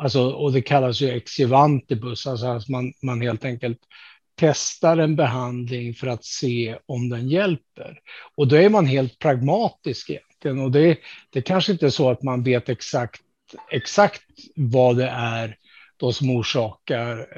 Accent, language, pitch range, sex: Norwegian, Swedish, 120-145 Hz, male